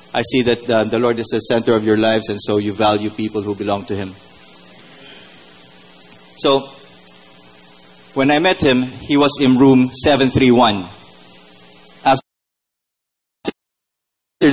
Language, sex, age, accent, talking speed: English, male, 20-39, Filipino, 130 wpm